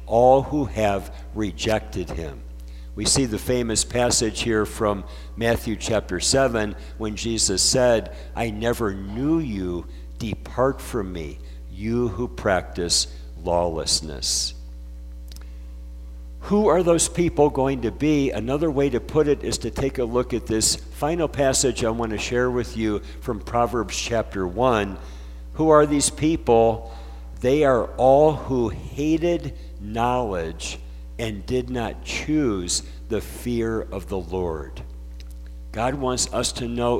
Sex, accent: male, American